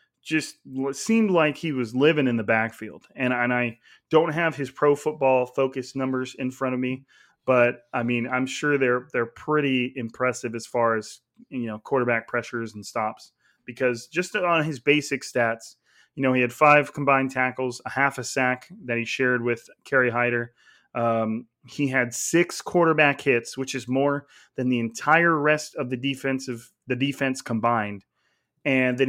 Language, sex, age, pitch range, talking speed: English, male, 30-49, 125-145 Hz, 175 wpm